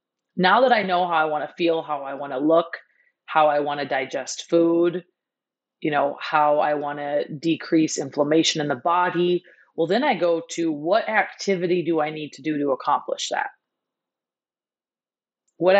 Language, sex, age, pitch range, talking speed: English, female, 30-49, 160-195 Hz, 180 wpm